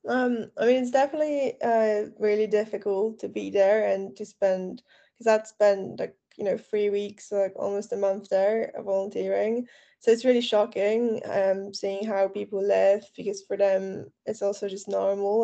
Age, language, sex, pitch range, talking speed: 10-29, English, female, 195-215 Hz, 175 wpm